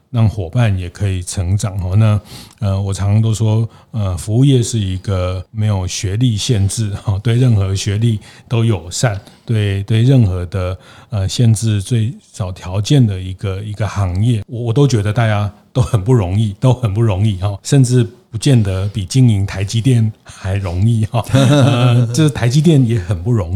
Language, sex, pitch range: Chinese, male, 100-120 Hz